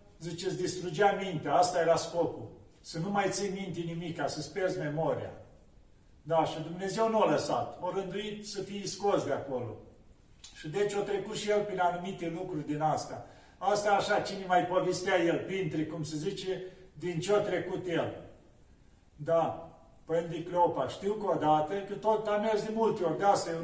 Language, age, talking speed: Romanian, 40-59, 175 wpm